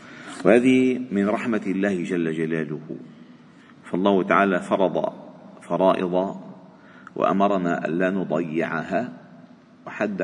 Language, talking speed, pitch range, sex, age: Arabic, 80 wpm, 90-125 Hz, male, 50-69